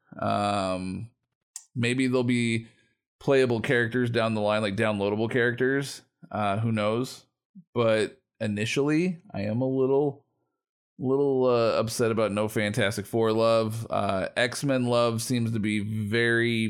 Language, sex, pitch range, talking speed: English, male, 105-125 Hz, 130 wpm